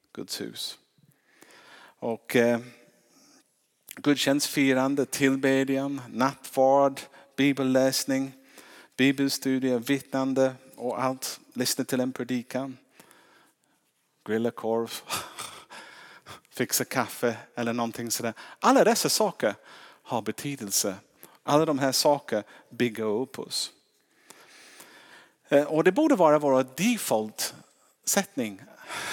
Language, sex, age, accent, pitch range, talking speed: Swedish, male, 50-69, Norwegian, 105-135 Hz, 85 wpm